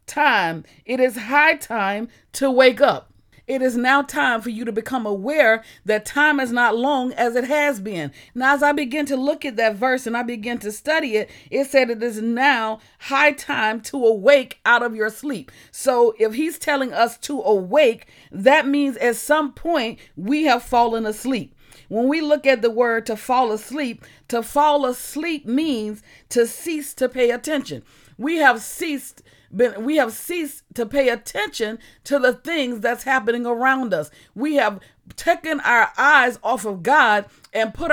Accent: American